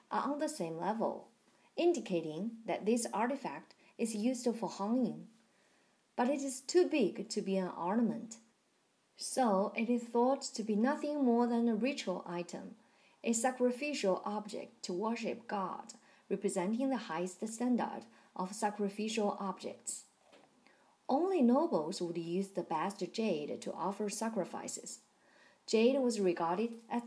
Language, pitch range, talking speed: English, 195-255 Hz, 135 wpm